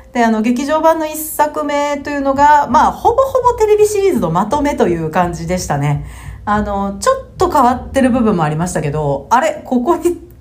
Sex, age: female, 40-59